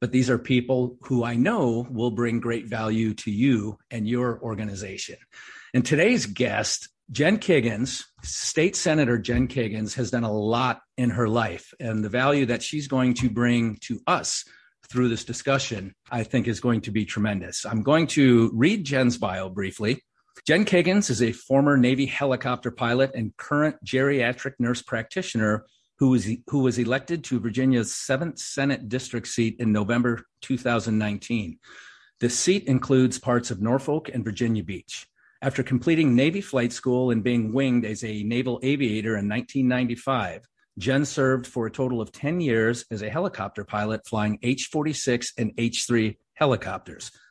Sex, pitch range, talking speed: male, 115-130 Hz, 160 wpm